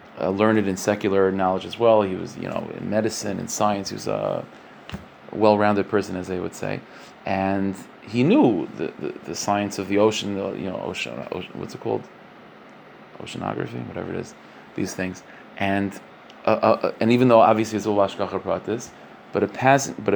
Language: English